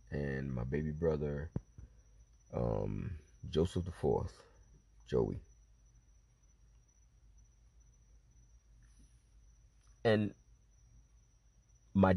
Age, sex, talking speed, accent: 30-49, male, 55 wpm, American